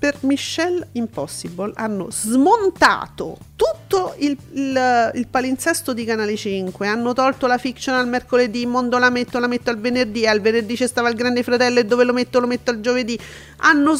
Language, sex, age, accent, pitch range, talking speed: Italian, female, 40-59, native, 210-275 Hz, 180 wpm